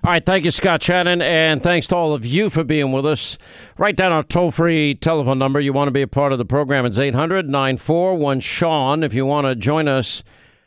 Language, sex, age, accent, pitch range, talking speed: English, male, 50-69, American, 130-160 Hz, 235 wpm